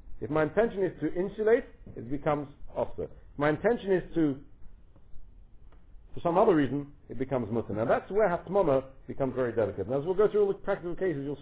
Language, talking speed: English, 200 wpm